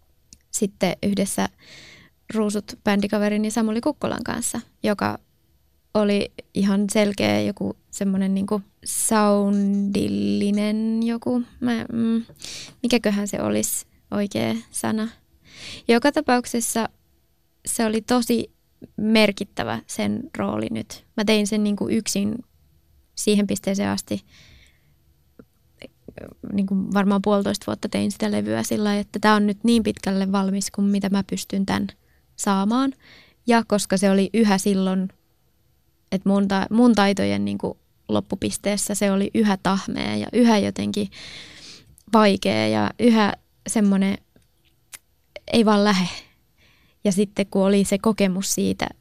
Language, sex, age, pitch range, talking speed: Finnish, female, 20-39, 185-215 Hz, 115 wpm